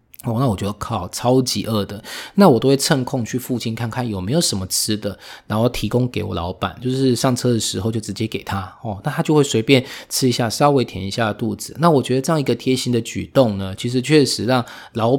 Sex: male